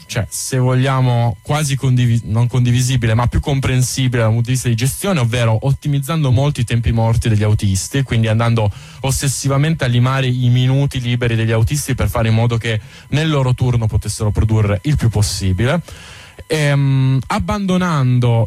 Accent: native